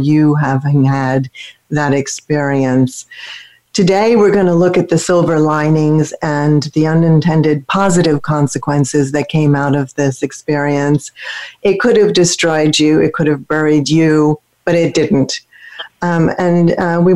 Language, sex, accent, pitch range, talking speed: English, female, American, 145-170 Hz, 145 wpm